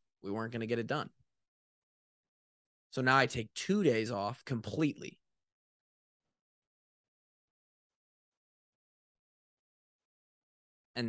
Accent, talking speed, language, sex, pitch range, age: American, 85 wpm, English, male, 100-120 Hz, 20-39